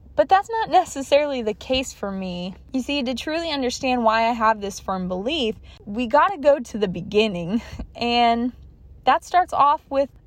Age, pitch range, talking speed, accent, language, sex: 20-39, 215-285 Hz, 180 wpm, American, English, female